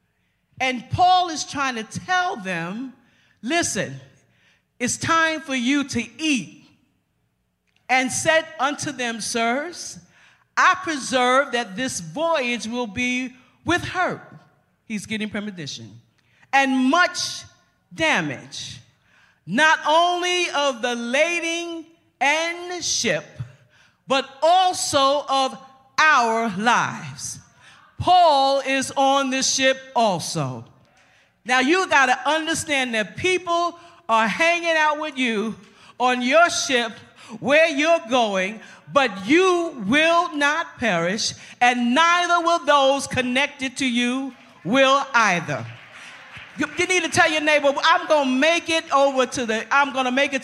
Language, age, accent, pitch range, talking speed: English, 40-59, American, 230-315 Hz, 120 wpm